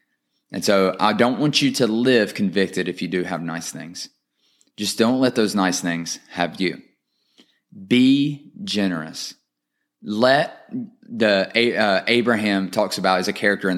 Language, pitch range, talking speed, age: English, 90-110 Hz, 150 wpm, 20-39